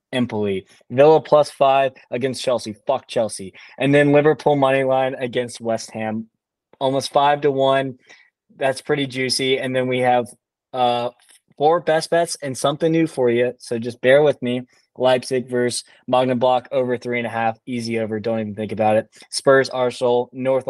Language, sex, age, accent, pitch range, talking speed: English, male, 20-39, American, 115-135 Hz, 175 wpm